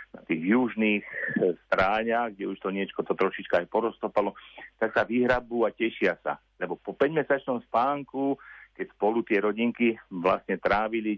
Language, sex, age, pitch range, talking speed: Slovak, male, 50-69, 105-130 Hz, 150 wpm